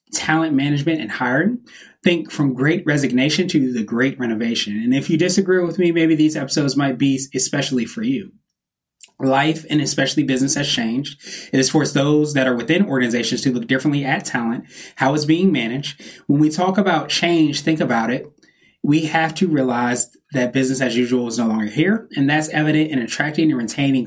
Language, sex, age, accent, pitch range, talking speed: English, male, 20-39, American, 130-165 Hz, 190 wpm